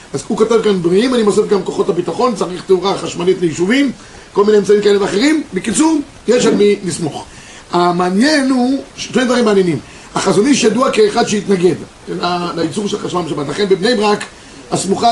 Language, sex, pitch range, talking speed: Hebrew, male, 195-245 Hz, 170 wpm